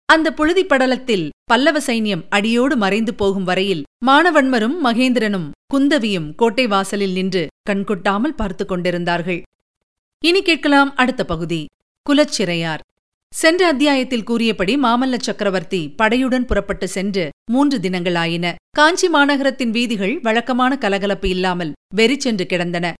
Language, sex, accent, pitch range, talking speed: Tamil, female, native, 190-260 Hz, 105 wpm